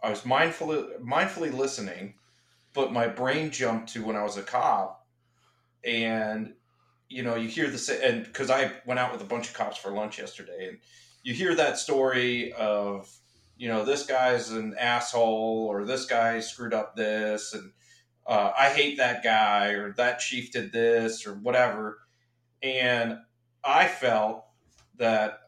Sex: male